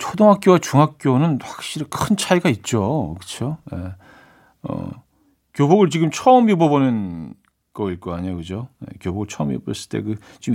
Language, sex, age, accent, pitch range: Korean, male, 40-59, native, 115-165 Hz